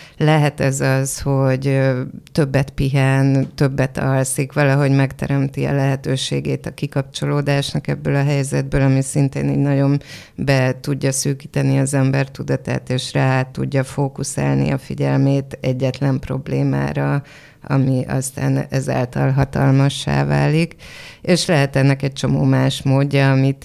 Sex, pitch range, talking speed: female, 135-145 Hz, 120 wpm